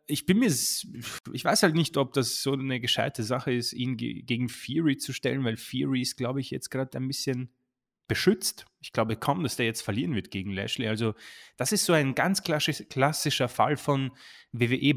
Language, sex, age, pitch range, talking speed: German, male, 30-49, 110-135 Hz, 195 wpm